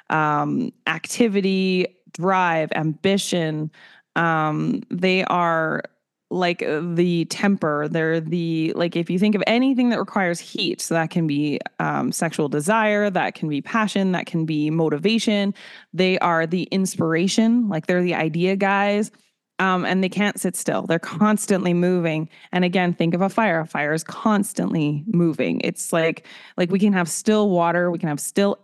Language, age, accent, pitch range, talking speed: English, 20-39, American, 165-200 Hz, 160 wpm